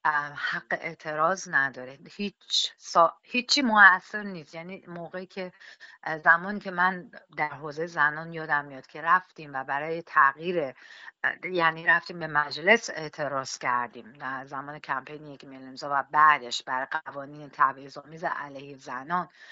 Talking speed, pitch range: 130 wpm, 150-195 Hz